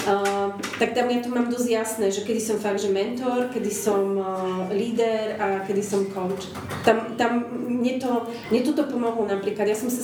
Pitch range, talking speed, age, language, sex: 200-230 Hz, 195 wpm, 30-49, Slovak, female